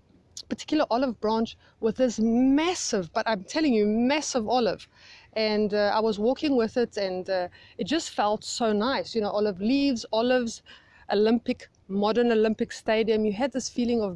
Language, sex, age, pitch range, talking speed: English, female, 30-49, 205-260 Hz, 170 wpm